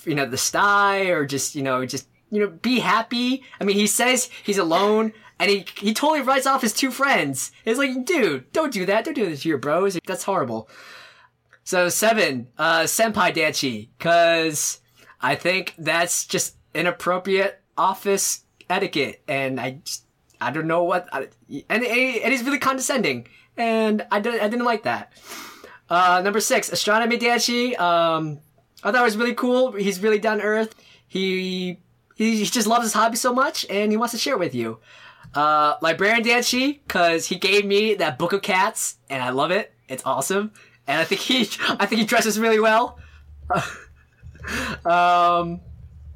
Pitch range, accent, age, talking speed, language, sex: 165-225 Hz, American, 20-39, 175 wpm, English, male